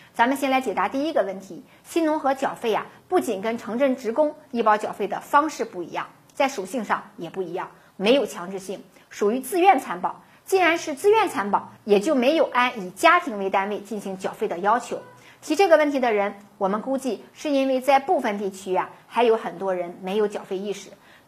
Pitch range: 195-275 Hz